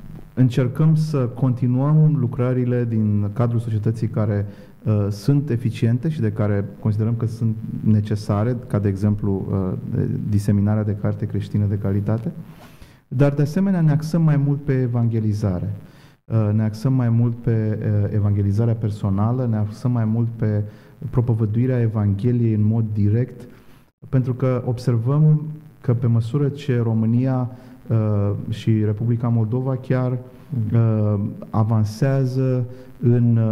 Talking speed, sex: 125 wpm, male